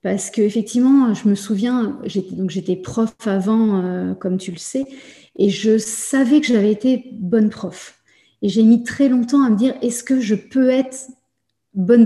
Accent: French